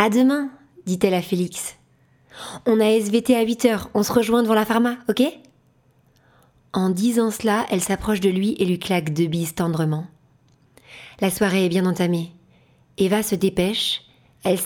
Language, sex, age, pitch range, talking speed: French, female, 40-59, 160-210 Hz, 175 wpm